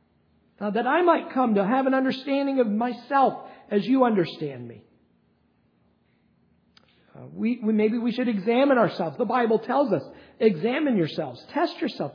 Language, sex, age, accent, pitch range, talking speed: English, male, 50-69, American, 155-225 Hz, 145 wpm